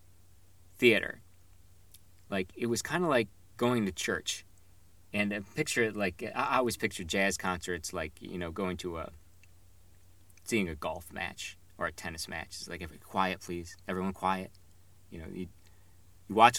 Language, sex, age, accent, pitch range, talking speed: English, male, 40-59, American, 90-105 Hz, 165 wpm